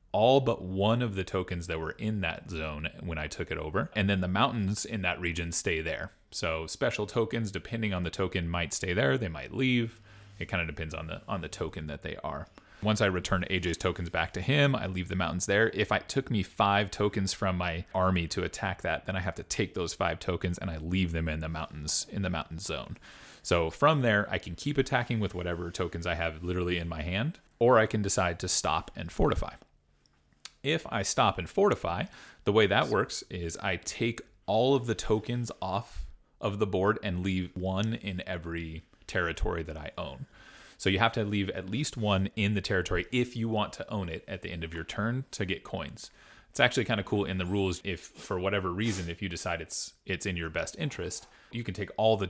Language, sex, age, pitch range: English, male, 30-49, 85-105 Hz